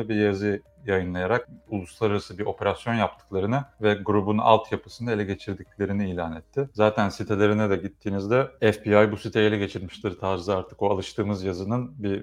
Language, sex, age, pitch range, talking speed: Turkish, male, 30-49, 95-110 Hz, 140 wpm